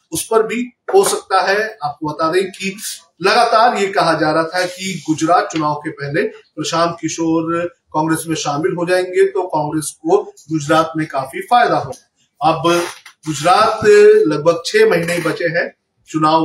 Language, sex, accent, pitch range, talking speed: Hindi, male, native, 150-190 Hz, 165 wpm